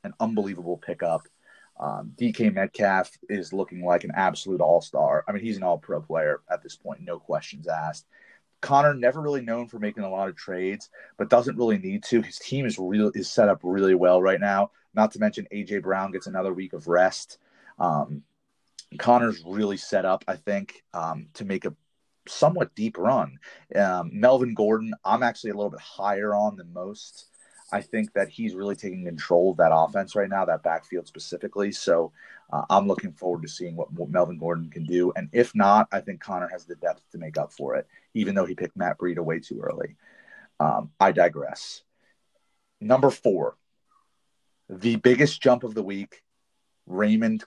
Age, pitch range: 30-49, 90-110 Hz